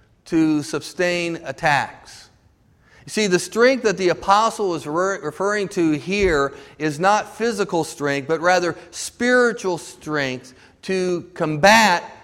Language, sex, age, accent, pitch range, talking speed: English, male, 50-69, American, 150-195 Hz, 120 wpm